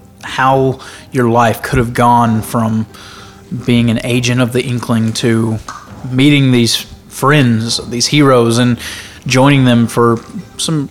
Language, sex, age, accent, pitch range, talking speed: English, male, 20-39, American, 110-130 Hz, 130 wpm